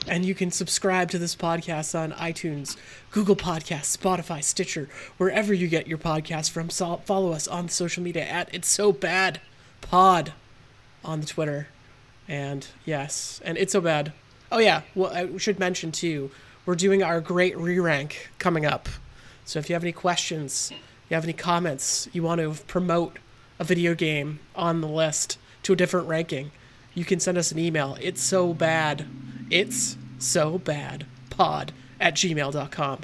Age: 30-49